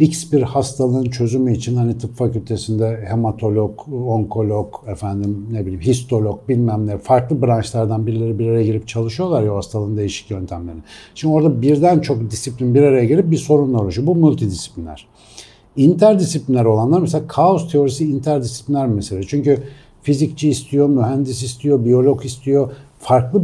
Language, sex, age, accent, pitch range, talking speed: Turkish, male, 60-79, native, 110-150 Hz, 145 wpm